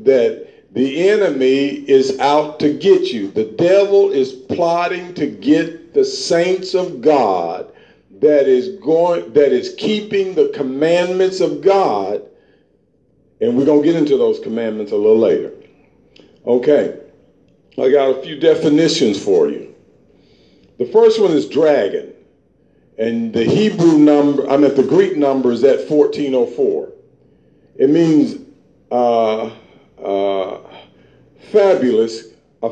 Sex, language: male, English